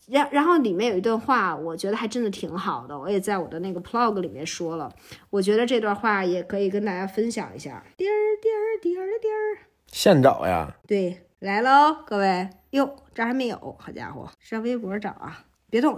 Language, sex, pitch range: Chinese, female, 200-290 Hz